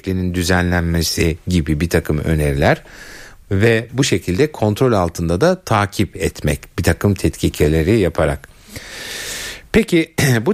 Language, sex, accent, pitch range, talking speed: Turkish, male, native, 80-130 Hz, 110 wpm